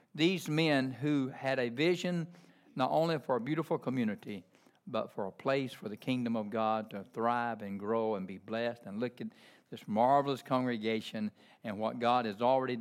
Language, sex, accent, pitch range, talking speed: English, male, American, 110-140 Hz, 185 wpm